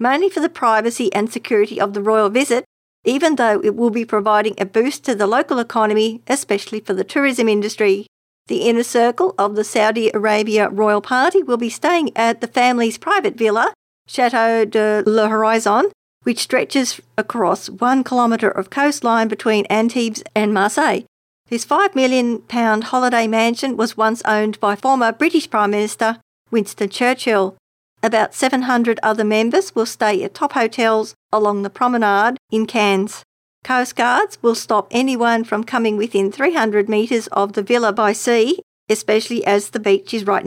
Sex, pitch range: female, 215-250 Hz